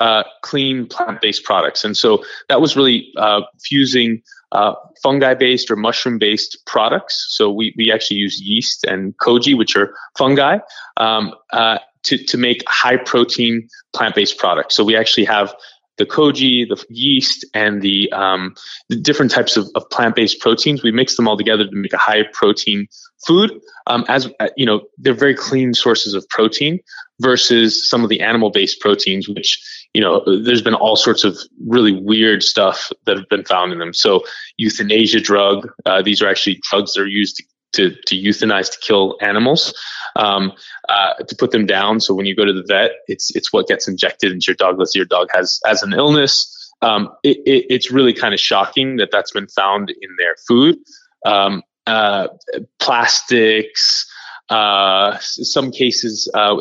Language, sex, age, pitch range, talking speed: English, male, 20-39, 105-145 Hz, 175 wpm